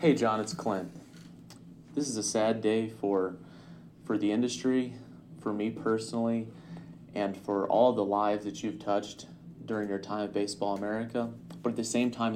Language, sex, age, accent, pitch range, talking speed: English, male, 30-49, American, 95-110 Hz, 170 wpm